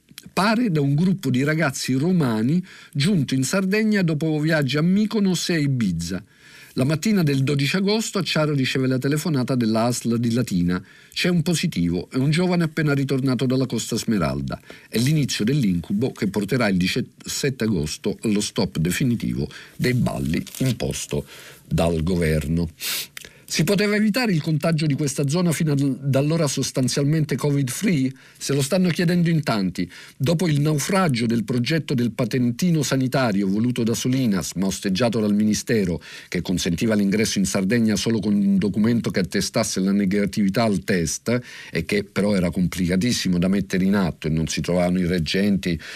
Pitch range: 105-165 Hz